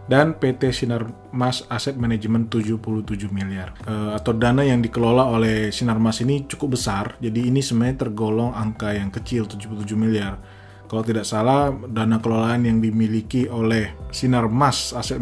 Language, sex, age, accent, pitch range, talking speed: Indonesian, male, 20-39, native, 105-120 Hz, 155 wpm